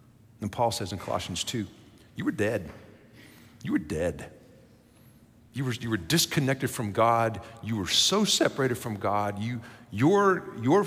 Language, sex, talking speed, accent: English, male, 145 wpm, American